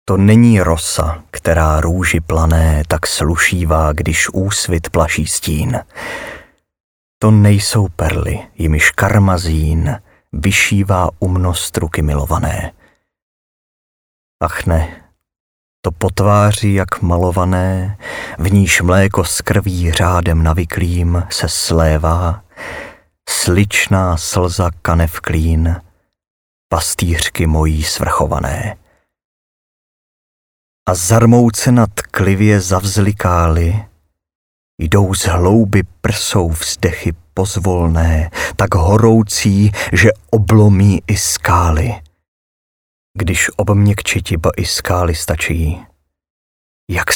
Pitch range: 80-100 Hz